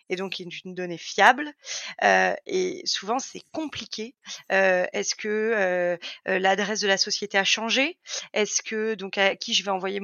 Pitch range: 195-245 Hz